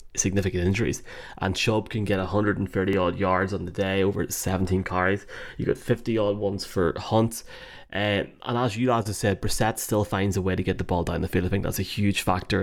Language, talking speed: English, 225 wpm